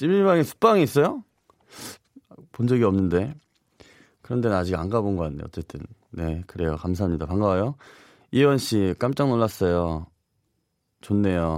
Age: 30-49